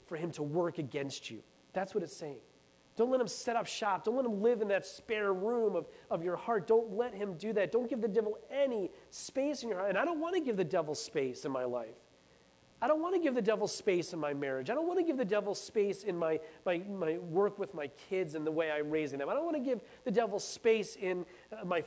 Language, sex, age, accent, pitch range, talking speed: English, male, 30-49, American, 155-230 Hz, 265 wpm